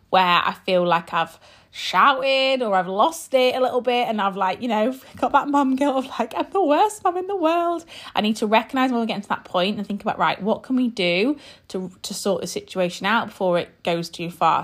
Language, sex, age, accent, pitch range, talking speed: English, female, 20-39, British, 180-255 Hz, 245 wpm